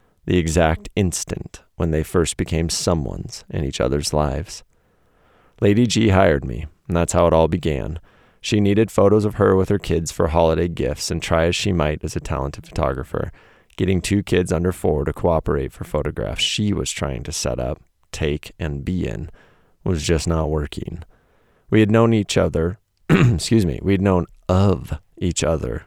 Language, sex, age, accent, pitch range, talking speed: English, male, 30-49, American, 80-95 Hz, 180 wpm